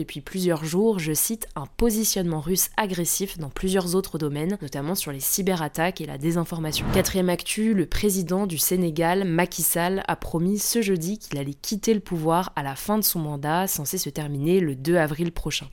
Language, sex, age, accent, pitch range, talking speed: French, female, 20-39, French, 150-185 Hz, 190 wpm